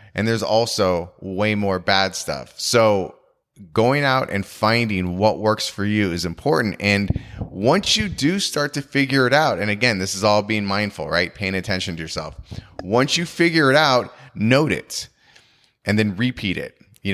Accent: American